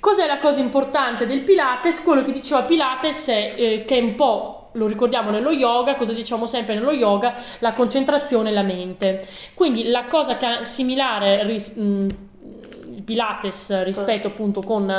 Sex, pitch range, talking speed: female, 210-270 Hz, 170 wpm